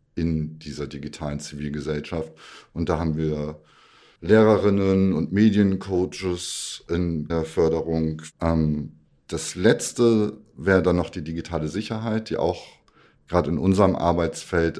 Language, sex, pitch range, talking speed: English, male, 80-90 Hz, 115 wpm